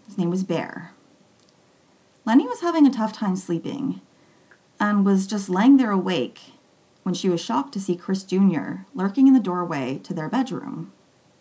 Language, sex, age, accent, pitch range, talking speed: English, female, 30-49, American, 180-235 Hz, 170 wpm